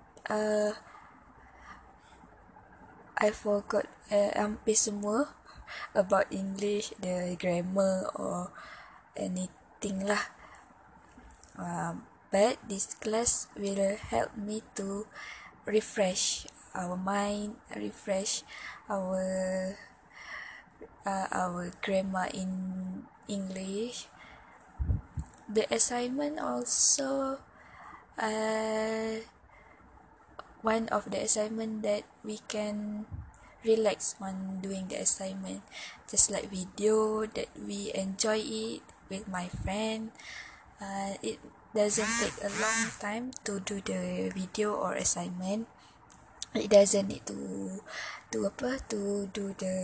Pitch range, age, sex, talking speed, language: 190-215 Hz, 10-29, female, 95 wpm, English